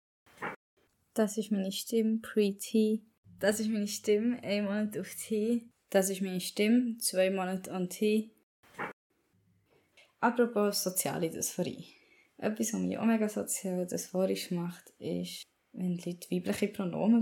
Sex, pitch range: female, 175-215 Hz